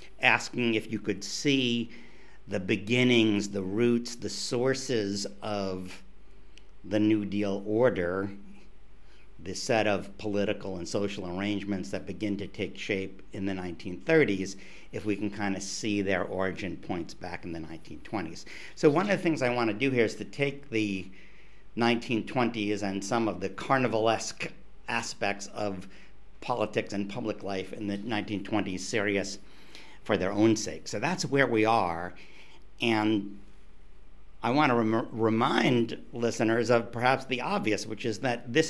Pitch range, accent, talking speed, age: 100-120 Hz, American, 150 wpm, 50-69